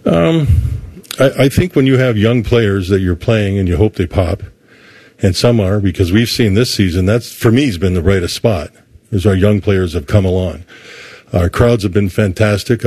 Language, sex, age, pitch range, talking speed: English, male, 50-69, 95-115 Hz, 210 wpm